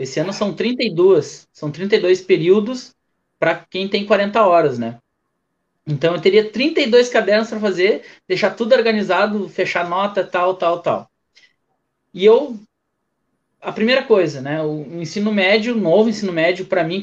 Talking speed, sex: 150 wpm, male